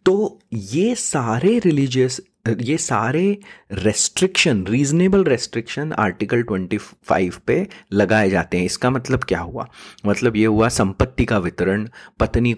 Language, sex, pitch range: English, male, 105-145 Hz